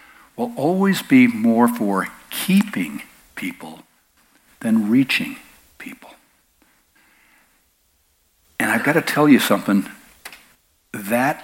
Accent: American